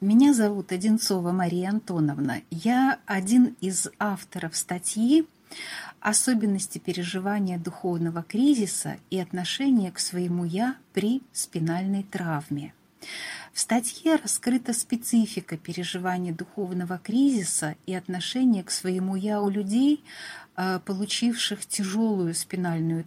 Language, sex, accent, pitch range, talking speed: Russian, female, native, 175-220 Hz, 100 wpm